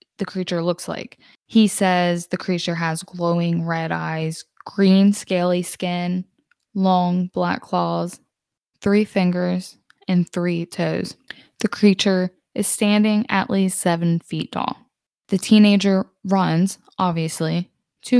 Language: English